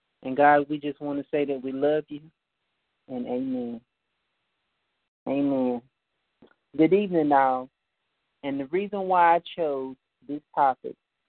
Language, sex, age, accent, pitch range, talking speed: English, male, 40-59, American, 135-170 Hz, 135 wpm